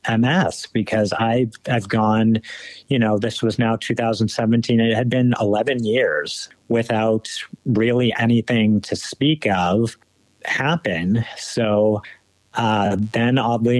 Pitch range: 100-115 Hz